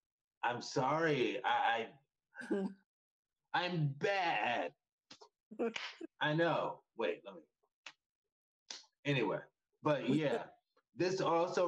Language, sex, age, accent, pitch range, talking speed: English, male, 30-49, American, 125-180 Hz, 80 wpm